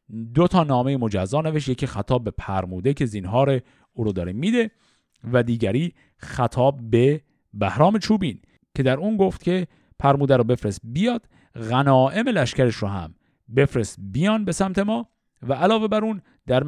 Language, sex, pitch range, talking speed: Persian, male, 110-155 Hz, 155 wpm